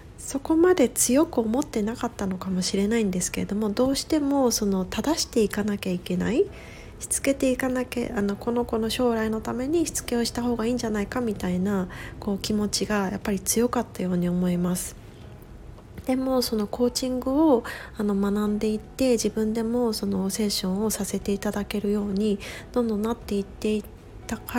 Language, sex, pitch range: Japanese, female, 200-245 Hz